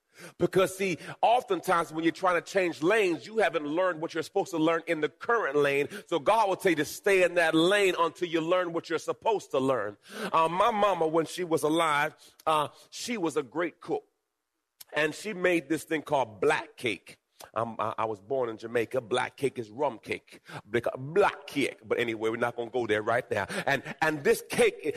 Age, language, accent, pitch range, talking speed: 30-49, English, American, 130-190 Hz, 210 wpm